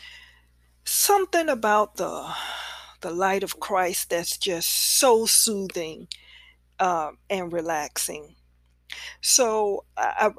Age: 40-59